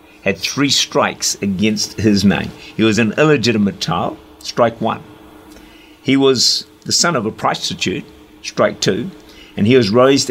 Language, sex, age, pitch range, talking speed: English, male, 50-69, 105-135 Hz, 150 wpm